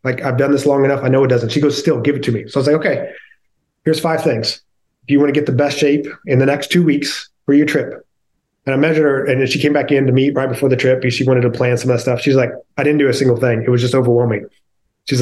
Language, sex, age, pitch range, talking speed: English, male, 30-49, 130-155 Hz, 310 wpm